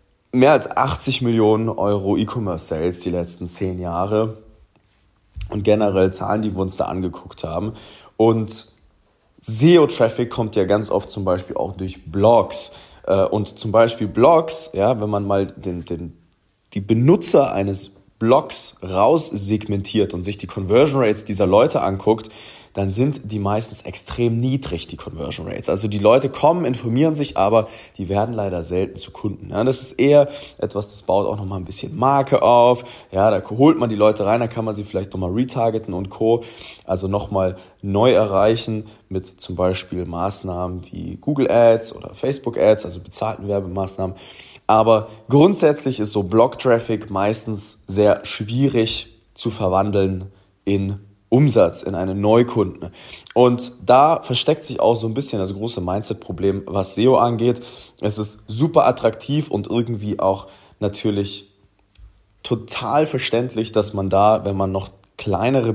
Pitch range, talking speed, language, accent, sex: 95-115 Hz, 150 wpm, German, German, male